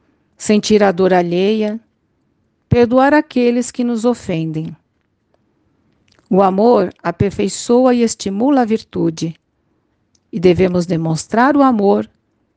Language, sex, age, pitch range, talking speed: Portuguese, female, 50-69, 160-245 Hz, 100 wpm